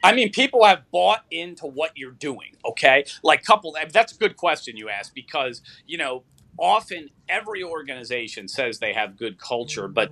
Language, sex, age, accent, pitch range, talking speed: English, male, 30-49, American, 140-190 Hz, 180 wpm